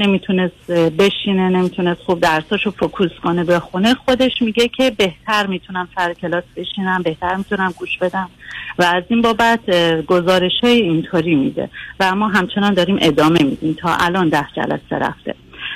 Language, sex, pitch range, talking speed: Persian, female, 170-225 Hz, 150 wpm